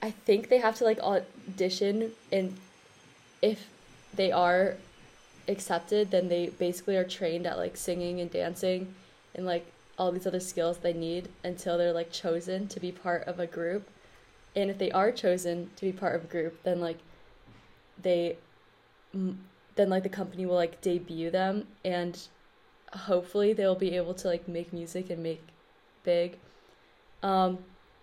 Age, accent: 10-29, American